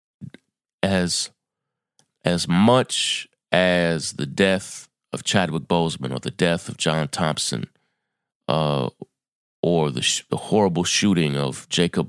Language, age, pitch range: English, 30-49, 75-95 Hz